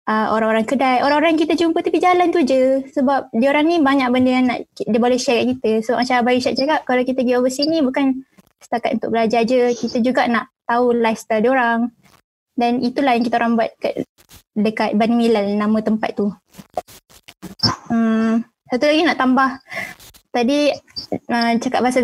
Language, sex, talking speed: Malay, female, 180 wpm